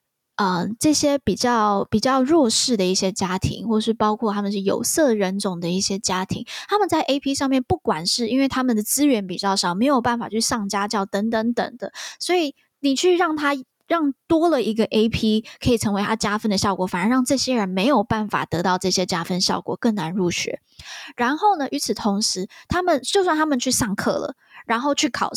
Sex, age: female, 20-39